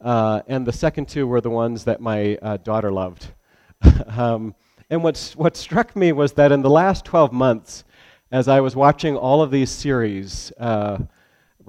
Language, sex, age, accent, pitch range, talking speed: English, male, 40-59, American, 105-145 Hz, 175 wpm